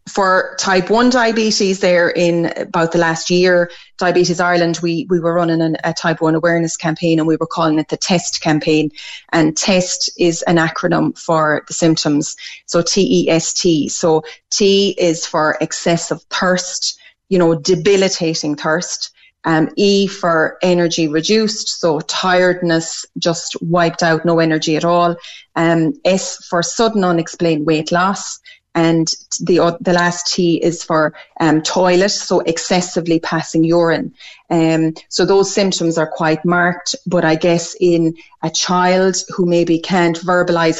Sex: female